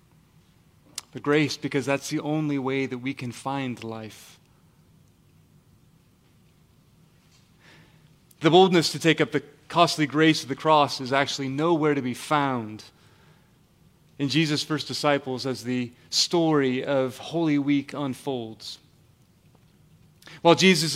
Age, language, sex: 30-49, English, male